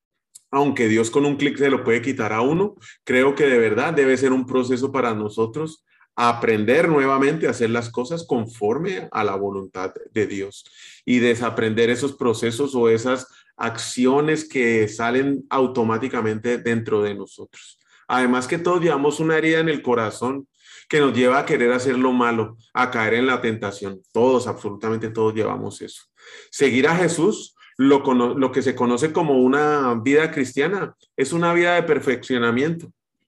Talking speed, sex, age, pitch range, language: 160 wpm, male, 30-49, 115-145 Hz, Spanish